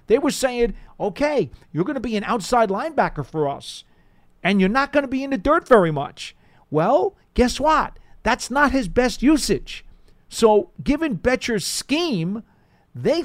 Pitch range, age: 165-245 Hz, 40-59